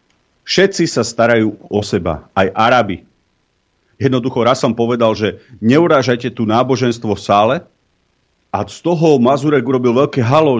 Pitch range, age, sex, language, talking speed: 105-140 Hz, 40-59, male, Slovak, 135 wpm